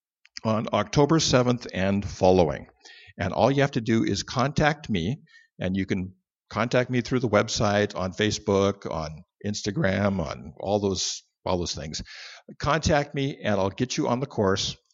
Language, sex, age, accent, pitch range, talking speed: English, male, 50-69, American, 100-130 Hz, 165 wpm